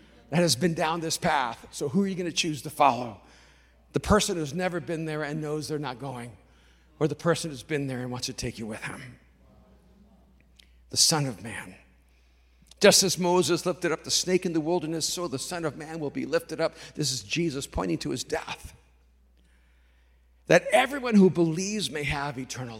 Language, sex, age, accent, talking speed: English, male, 50-69, American, 200 wpm